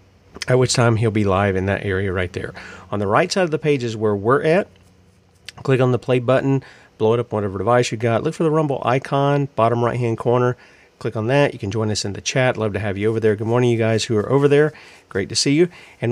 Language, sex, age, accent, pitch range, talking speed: English, male, 40-59, American, 100-125 Hz, 270 wpm